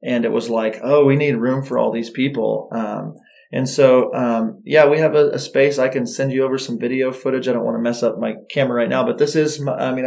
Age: 20-39